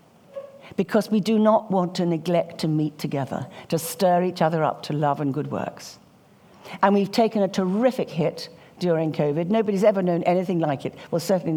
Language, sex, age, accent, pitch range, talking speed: English, female, 60-79, British, 150-200 Hz, 185 wpm